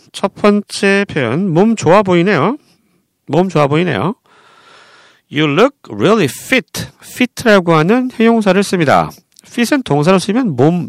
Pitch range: 155-235 Hz